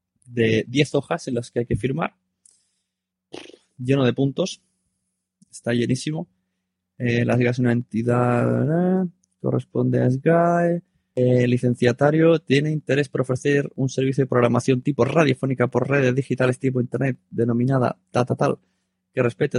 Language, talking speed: Spanish, 135 wpm